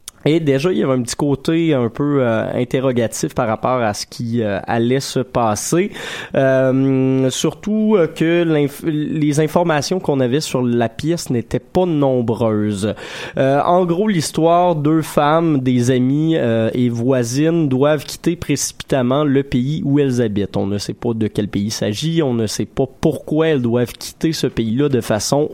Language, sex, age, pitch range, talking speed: French, male, 20-39, 120-155 Hz, 175 wpm